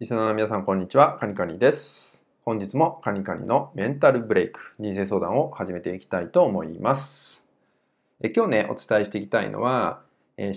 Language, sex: Japanese, male